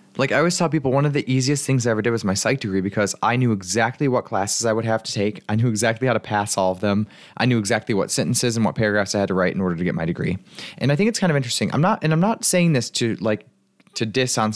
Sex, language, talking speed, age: male, English, 305 wpm, 20-39